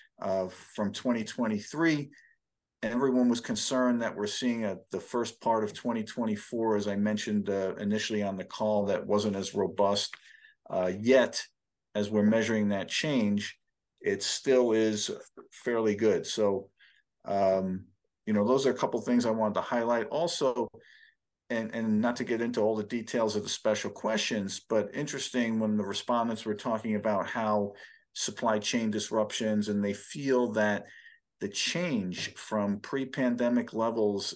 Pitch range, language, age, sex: 105-120 Hz, English, 50-69, male